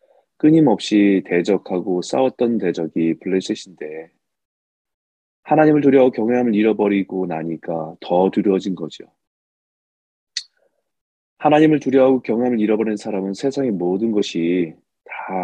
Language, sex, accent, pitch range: Korean, male, native, 95-140 Hz